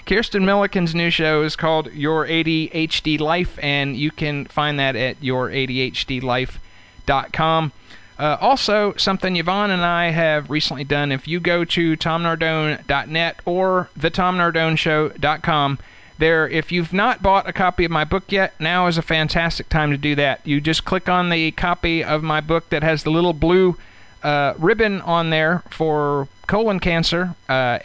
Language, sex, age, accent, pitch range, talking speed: English, male, 40-59, American, 140-170 Hz, 155 wpm